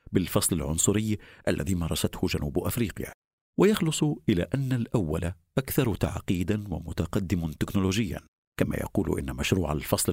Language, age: Arabic, 50-69